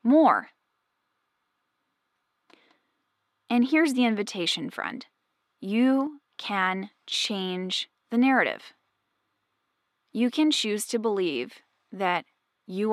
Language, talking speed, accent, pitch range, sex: English, 85 wpm, American, 195-285 Hz, female